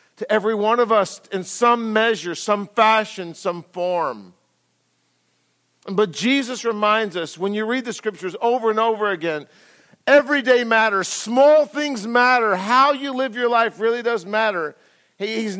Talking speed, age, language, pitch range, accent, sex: 150 wpm, 50-69, English, 175-235 Hz, American, male